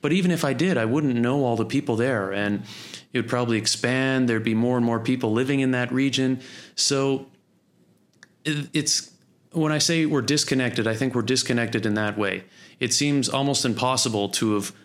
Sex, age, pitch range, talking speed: male, 30-49, 110-135 Hz, 190 wpm